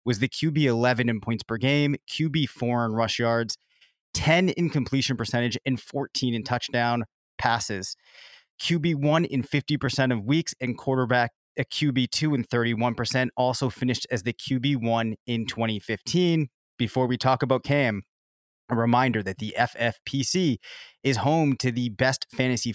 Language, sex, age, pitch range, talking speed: English, male, 30-49, 115-140 Hz, 155 wpm